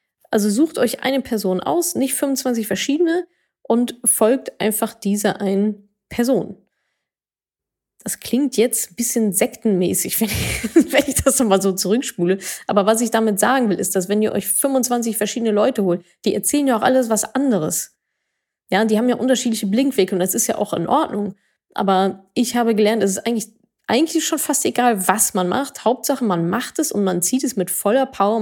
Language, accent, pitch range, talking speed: German, German, 200-260 Hz, 185 wpm